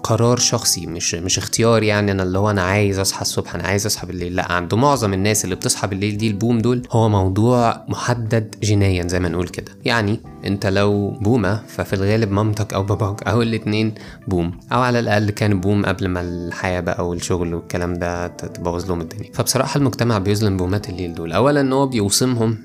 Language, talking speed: Arabic, 190 wpm